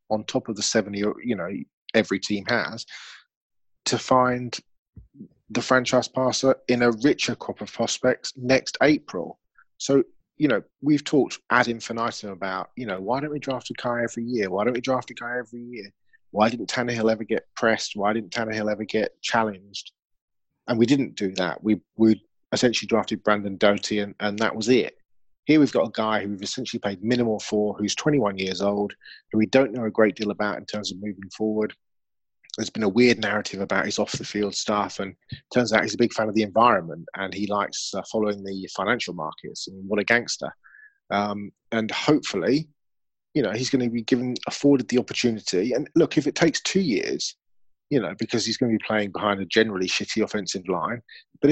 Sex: male